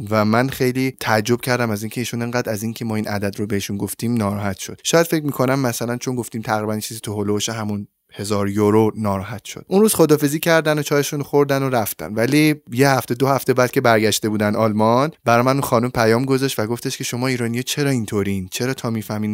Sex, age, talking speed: male, 20-39, 210 wpm